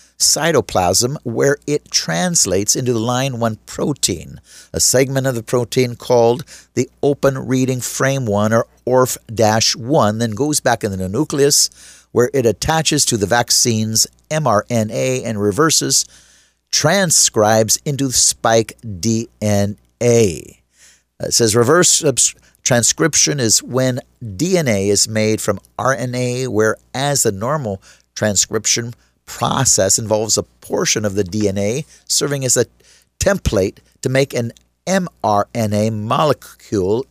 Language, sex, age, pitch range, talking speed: English, male, 50-69, 105-140 Hz, 120 wpm